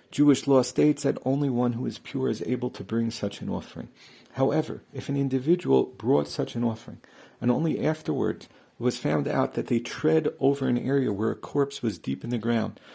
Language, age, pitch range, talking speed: English, 50-69, 110-140 Hz, 205 wpm